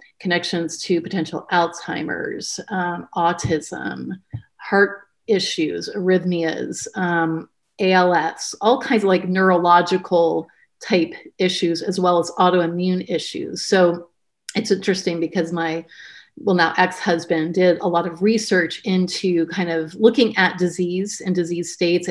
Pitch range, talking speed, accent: 170-190 Hz, 120 wpm, American